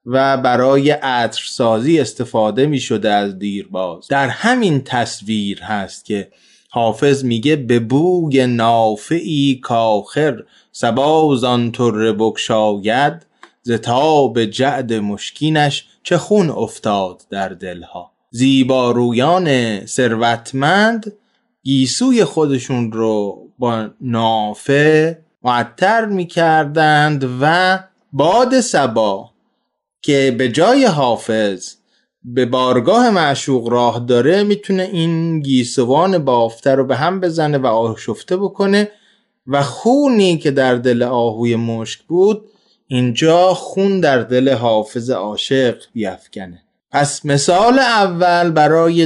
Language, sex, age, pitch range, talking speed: Persian, male, 20-39, 120-175 Hz, 100 wpm